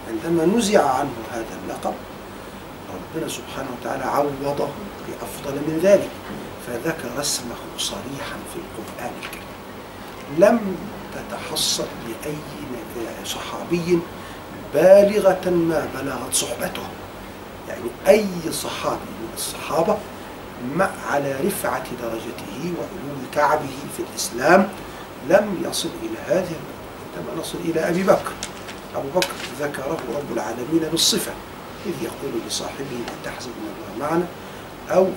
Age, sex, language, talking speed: 50-69, male, Arabic, 105 wpm